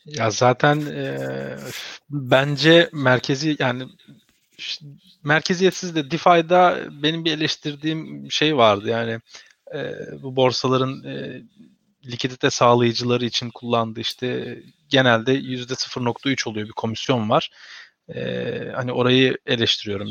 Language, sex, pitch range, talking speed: Turkish, male, 115-155 Hz, 105 wpm